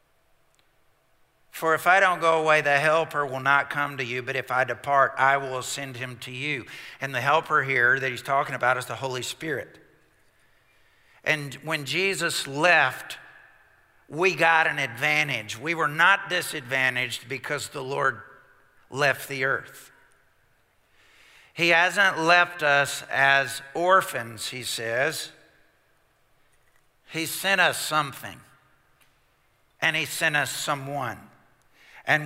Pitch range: 135-165 Hz